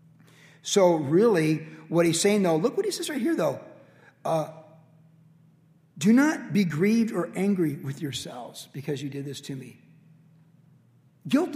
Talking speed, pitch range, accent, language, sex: 150 wpm, 155-185 Hz, American, English, male